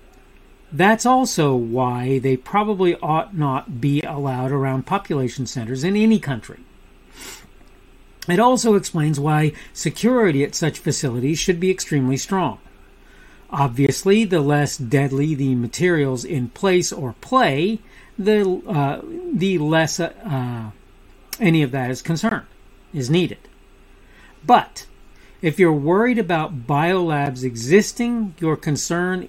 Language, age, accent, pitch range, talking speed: English, 50-69, American, 135-190 Hz, 120 wpm